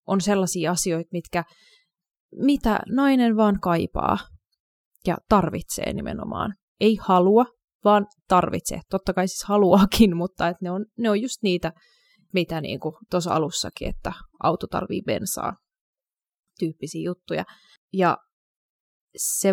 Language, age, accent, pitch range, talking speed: Finnish, 20-39, native, 170-200 Hz, 115 wpm